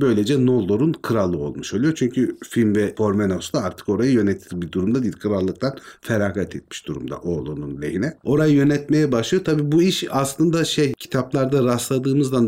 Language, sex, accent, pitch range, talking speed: Turkish, male, native, 95-130 Hz, 150 wpm